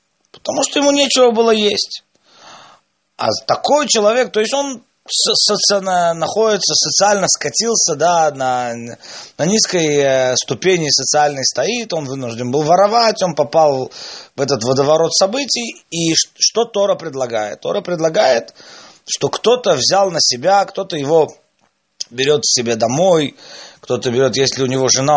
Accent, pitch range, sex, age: native, 135-200 Hz, male, 30-49